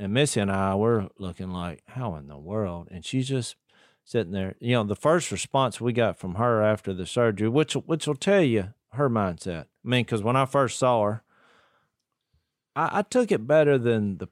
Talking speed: 210 wpm